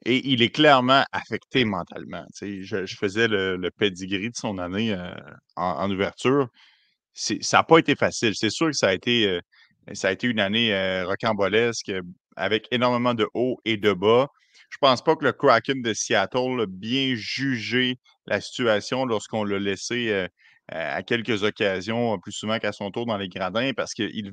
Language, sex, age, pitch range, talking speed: French, male, 30-49, 105-130 Hz, 190 wpm